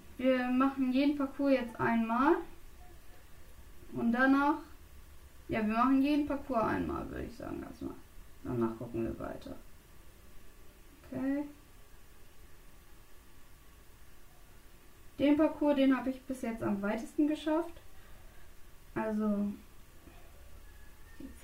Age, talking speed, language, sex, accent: 10-29, 100 wpm, German, female, German